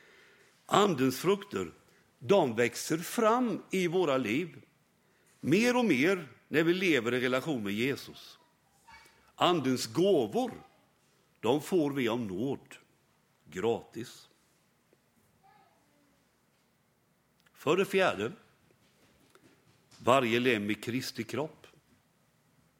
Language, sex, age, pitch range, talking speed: Swedish, male, 60-79, 125-195 Hz, 90 wpm